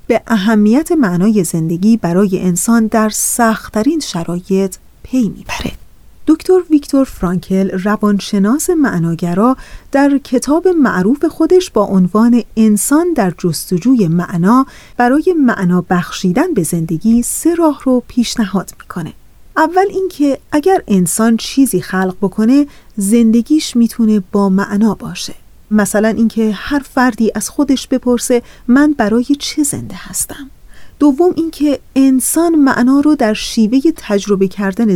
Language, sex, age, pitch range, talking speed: Persian, female, 30-49, 195-275 Hz, 120 wpm